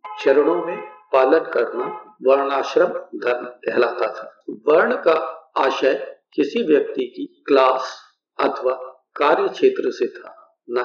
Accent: native